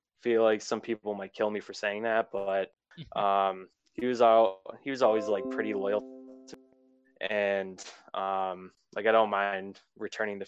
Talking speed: 180 wpm